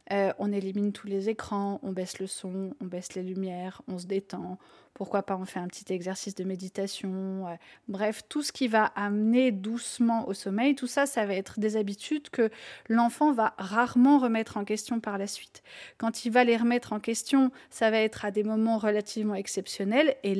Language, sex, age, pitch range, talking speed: French, female, 30-49, 200-240 Hz, 205 wpm